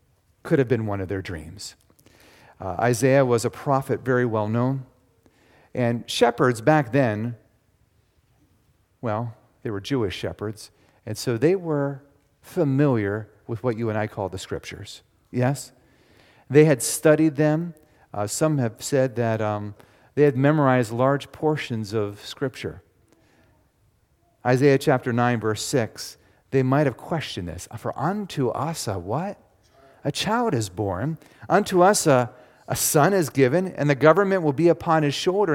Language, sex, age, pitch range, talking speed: English, male, 40-59, 110-160 Hz, 150 wpm